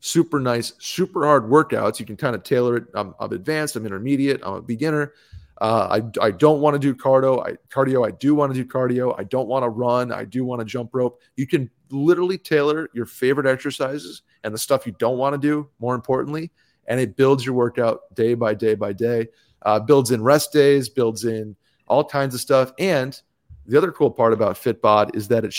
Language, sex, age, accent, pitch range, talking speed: English, male, 30-49, American, 115-145 Hz, 220 wpm